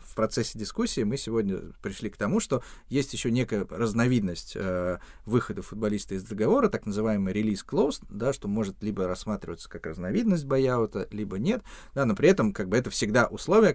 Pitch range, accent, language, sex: 100-125 Hz, native, Russian, male